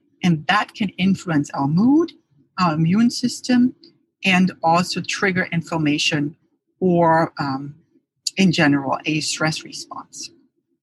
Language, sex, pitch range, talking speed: English, female, 160-205 Hz, 110 wpm